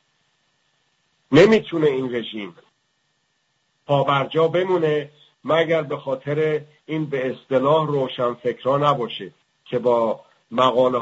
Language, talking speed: English, 100 wpm